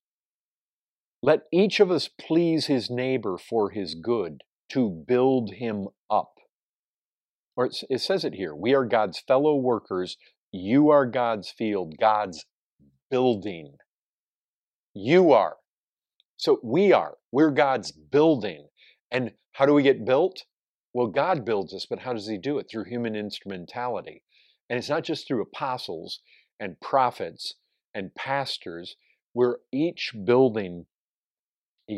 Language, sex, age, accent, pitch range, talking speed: English, male, 50-69, American, 105-135 Hz, 135 wpm